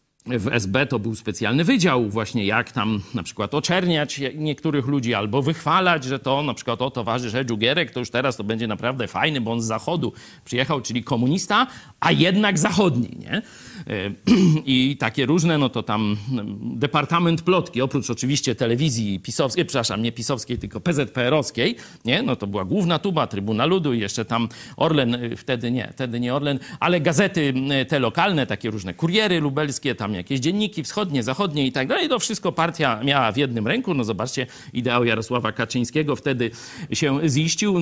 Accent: native